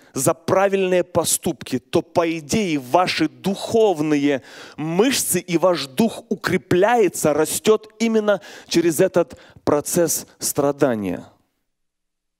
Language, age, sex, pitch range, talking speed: Russian, 30-49, male, 140-180 Hz, 90 wpm